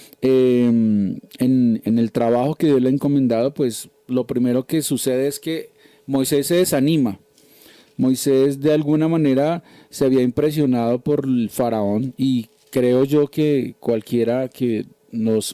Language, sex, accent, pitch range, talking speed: Spanish, male, Colombian, 120-150 Hz, 145 wpm